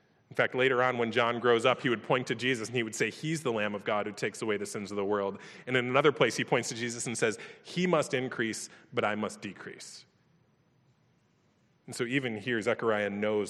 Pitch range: 110-140 Hz